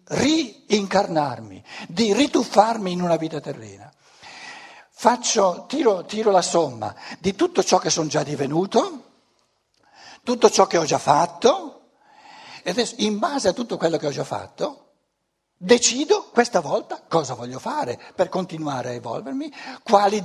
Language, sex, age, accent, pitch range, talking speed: Italian, male, 60-79, native, 160-245 Hz, 140 wpm